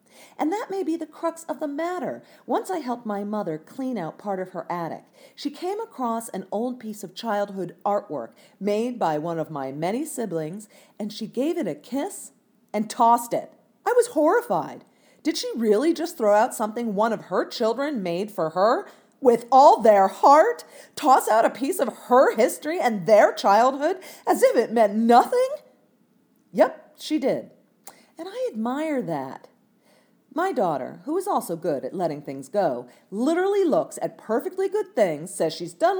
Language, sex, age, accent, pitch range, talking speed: English, female, 40-59, American, 205-315 Hz, 180 wpm